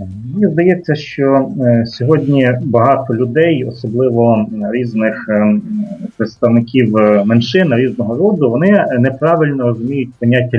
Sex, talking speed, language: male, 90 wpm, English